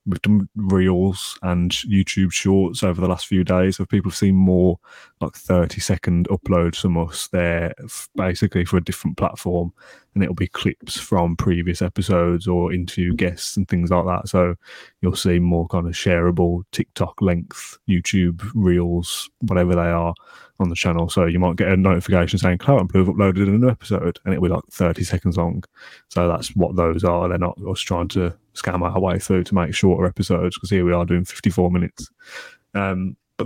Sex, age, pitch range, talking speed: male, 20-39, 90-95 Hz, 190 wpm